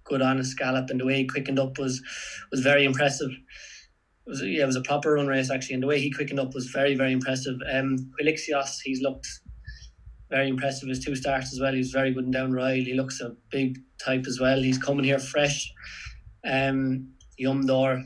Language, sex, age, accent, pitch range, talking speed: English, male, 20-39, Irish, 130-145 Hz, 205 wpm